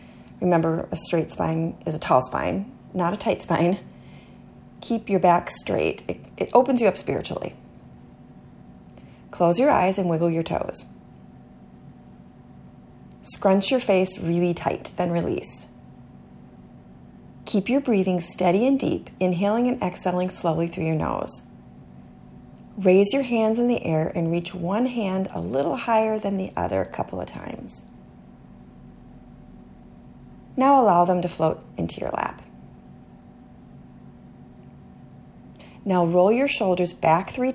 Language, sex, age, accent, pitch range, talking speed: English, female, 30-49, American, 155-205 Hz, 135 wpm